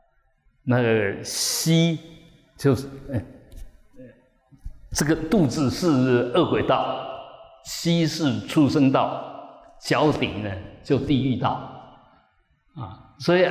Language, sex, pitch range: Chinese, male, 115-155 Hz